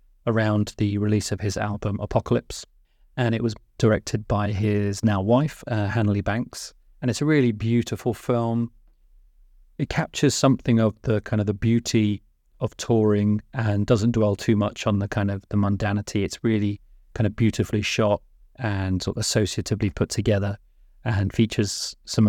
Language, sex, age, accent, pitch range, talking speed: English, male, 30-49, British, 100-115 Hz, 165 wpm